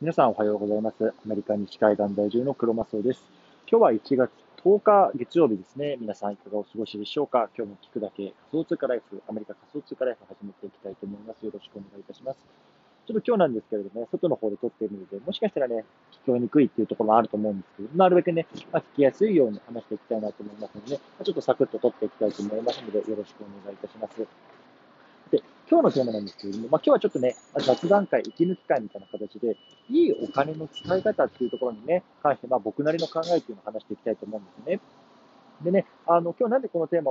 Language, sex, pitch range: Japanese, male, 105-170 Hz